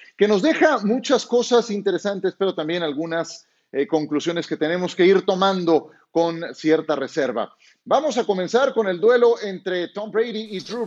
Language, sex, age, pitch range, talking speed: Spanish, male, 40-59, 180-225 Hz, 165 wpm